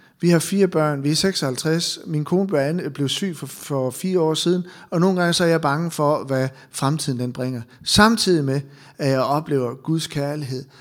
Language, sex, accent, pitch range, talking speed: Danish, male, native, 135-175 Hz, 195 wpm